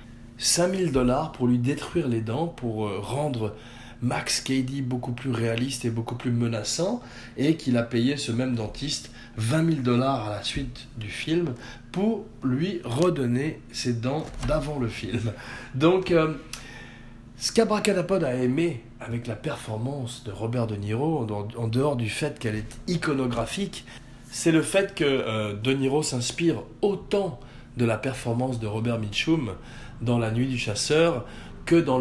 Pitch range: 115-140 Hz